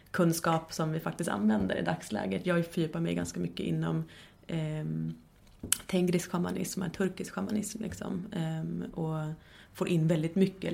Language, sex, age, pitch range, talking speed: English, female, 30-49, 155-180 Hz, 140 wpm